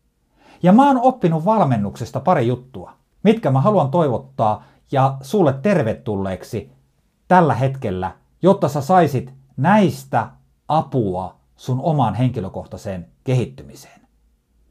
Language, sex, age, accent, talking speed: Finnish, male, 50-69, native, 100 wpm